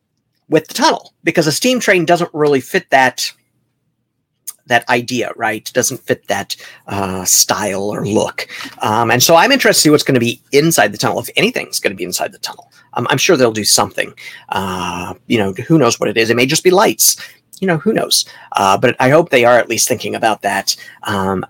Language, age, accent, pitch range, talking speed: English, 40-59, American, 115-145 Hz, 220 wpm